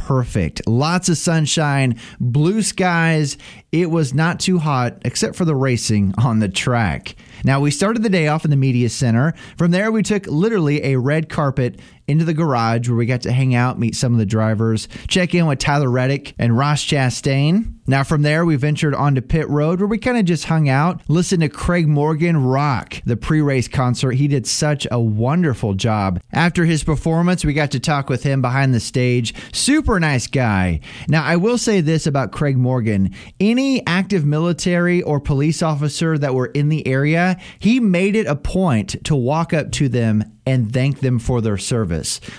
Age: 30-49